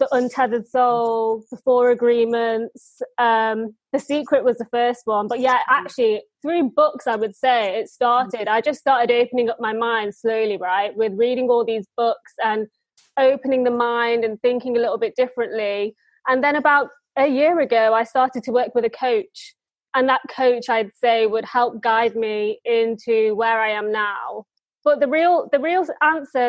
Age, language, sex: 20-39, English, female